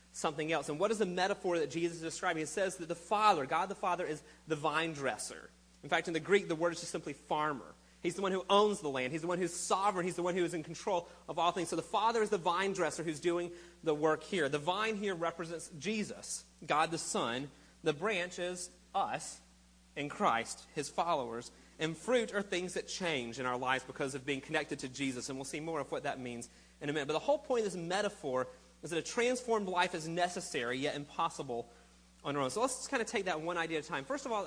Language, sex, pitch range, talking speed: English, male, 145-190 Hz, 260 wpm